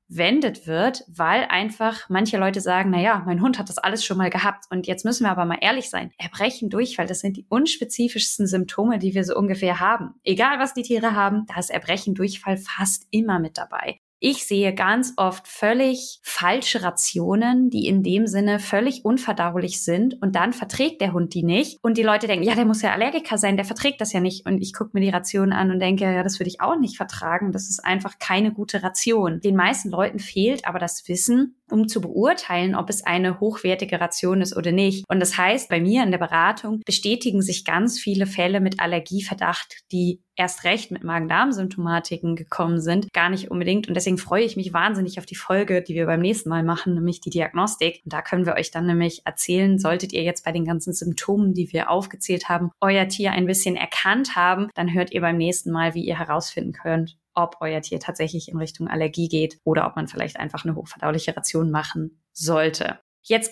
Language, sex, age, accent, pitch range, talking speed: German, female, 20-39, German, 175-215 Hz, 210 wpm